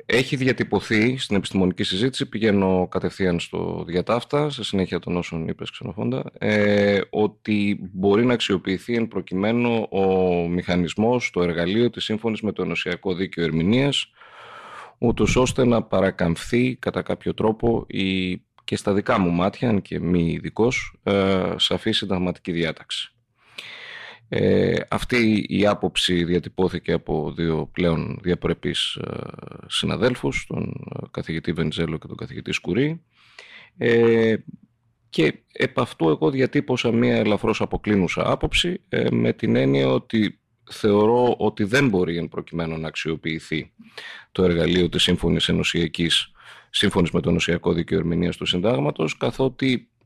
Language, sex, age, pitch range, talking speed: Greek, male, 30-49, 90-115 Hz, 125 wpm